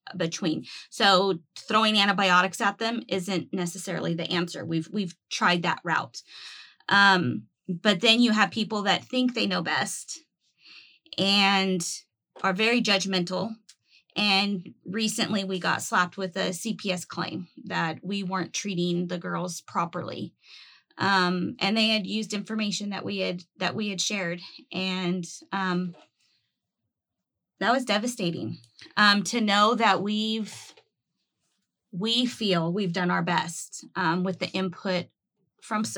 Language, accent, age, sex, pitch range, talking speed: English, American, 20-39, female, 180-210 Hz, 135 wpm